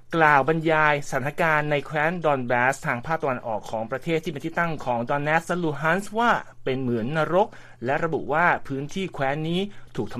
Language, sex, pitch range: Thai, male, 120-160 Hz